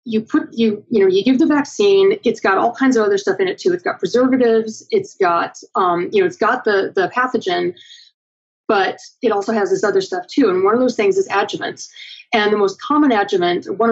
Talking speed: 230 wpm